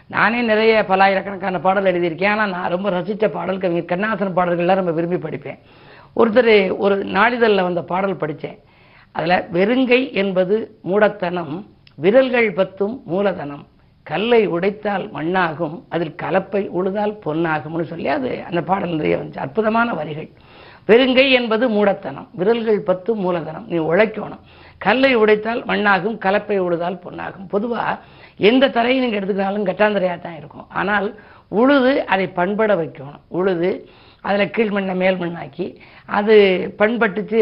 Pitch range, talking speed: 175-215 Hz, 120 wpm